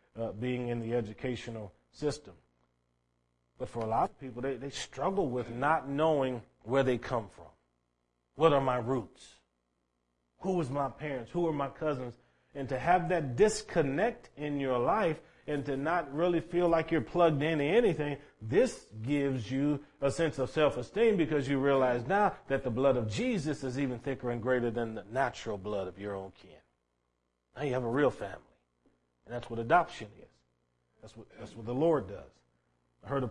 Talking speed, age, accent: 185 wpm, 40-59, American